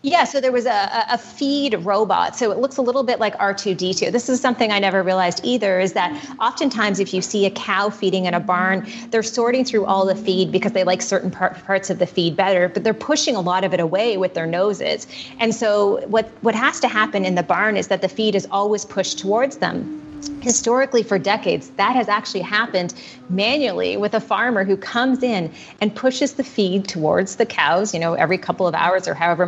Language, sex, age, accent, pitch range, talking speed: English, female, 30-49, American, 180-220 Hz, 220 wpm